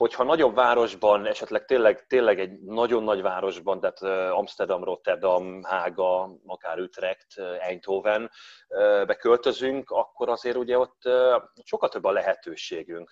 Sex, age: male, 30-49